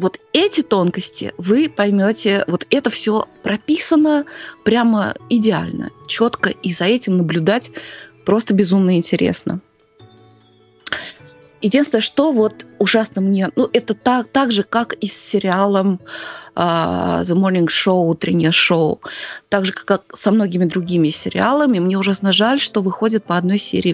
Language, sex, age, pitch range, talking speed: Russian, female, 20-39, 170-225 Hz, 140 wpm